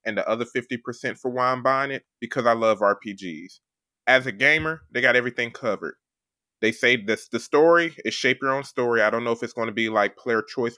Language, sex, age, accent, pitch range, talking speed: English, male, 20-39, American, 120-150 Hz, 225 wpm